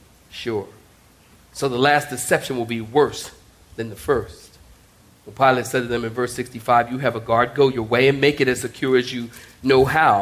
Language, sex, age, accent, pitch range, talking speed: English, male, 40-59, American, 110-140 Hz, 200 wpm